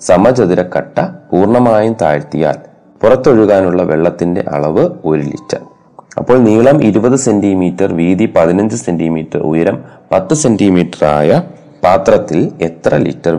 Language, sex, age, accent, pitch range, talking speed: Malayalam, male, 30-49, native, 85-115 Hz, 100 wpm